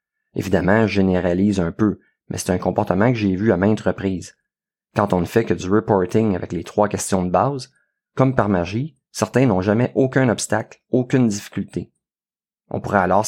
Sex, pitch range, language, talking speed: male, 95-115 Hz, French, 185 wpm